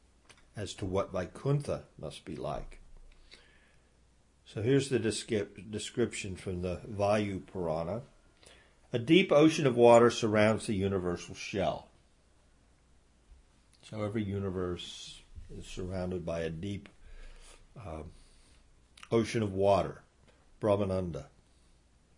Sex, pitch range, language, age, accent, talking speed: male, 80-120 Hz, English, 50-69, American, 100 wpm